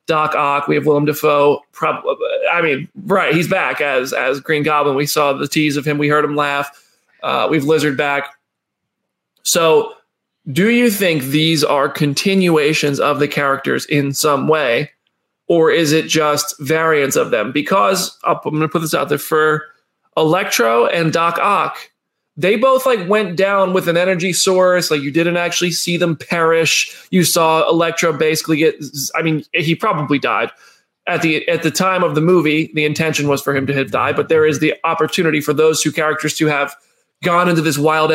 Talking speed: 185 wpm